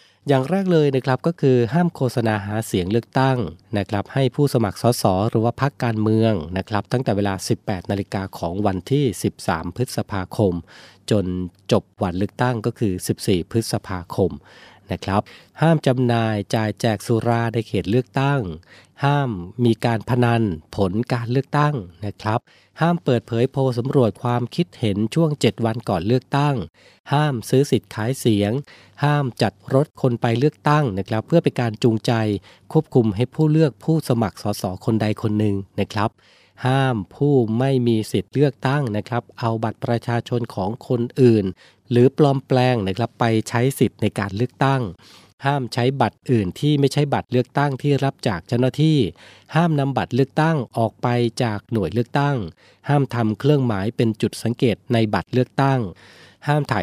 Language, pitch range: Thai, 105-130 Hz